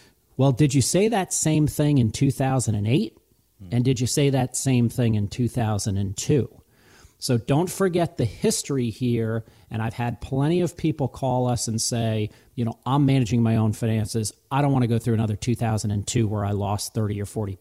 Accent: American